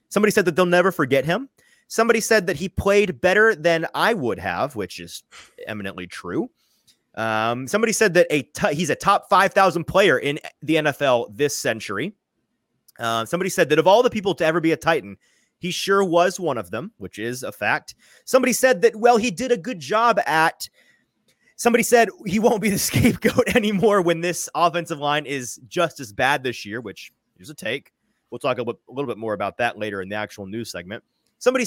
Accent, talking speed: American, 200 wpm